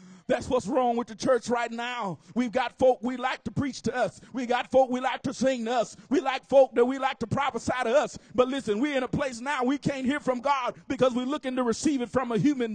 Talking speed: 270 wpm